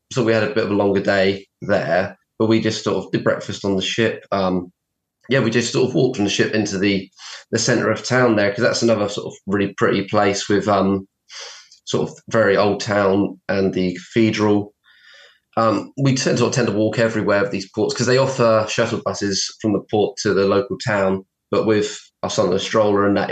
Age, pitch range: 20-39, 100-115 Hz